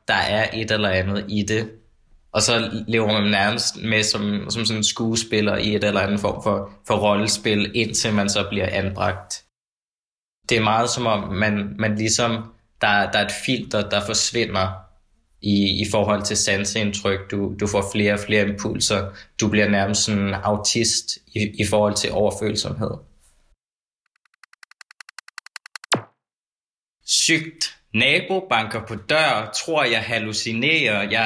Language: Danish